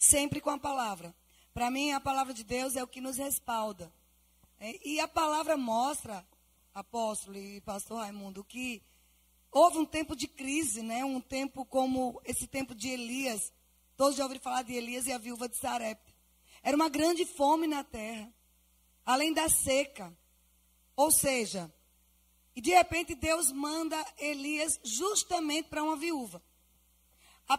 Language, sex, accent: Portuguese, female, Brazilian